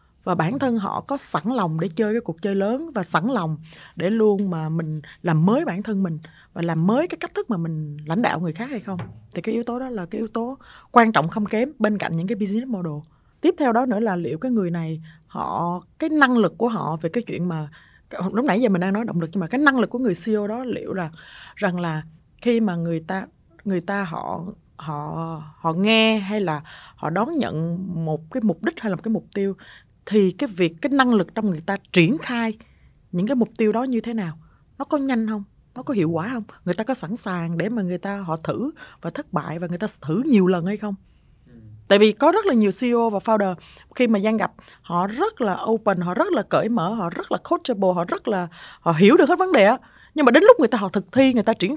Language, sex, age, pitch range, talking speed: Vietnamese, female, 20-39, 170-235 Hz, 255 wpm